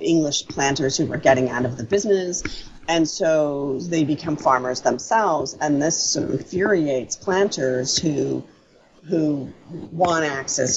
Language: English